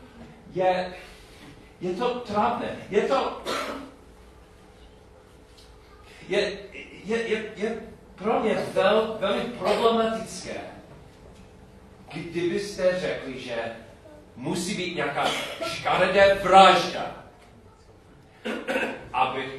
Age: 40-59